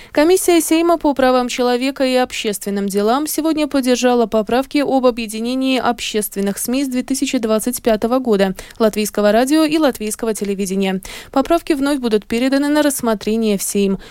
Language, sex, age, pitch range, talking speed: Russian, female, 20-39, 205-260 Hz, 130 wpm